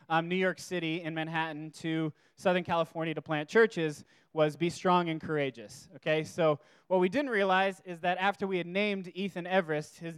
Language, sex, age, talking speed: English, male, 20-39, 190 wpm